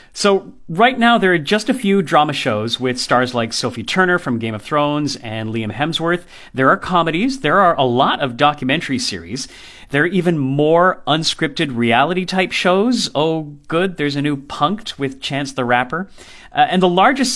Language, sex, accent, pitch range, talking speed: English, male, American, 130-185 Hz, 185 wpm